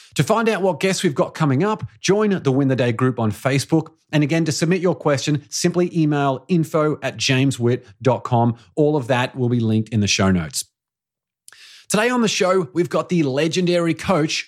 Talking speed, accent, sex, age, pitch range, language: 195 wpm, Australian, male, 30-49, 125-175 Hz, English